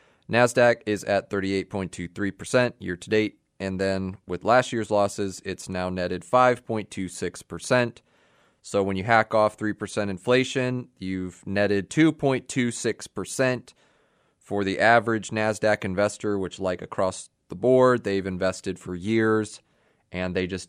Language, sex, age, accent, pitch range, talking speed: English, male, 30-49, American, 90-110 Hz, 120 wpm